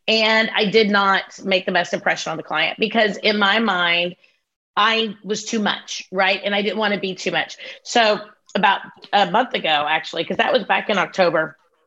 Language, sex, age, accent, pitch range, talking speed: English, female, 30-49, American, 185-225 Hz, 200 wpm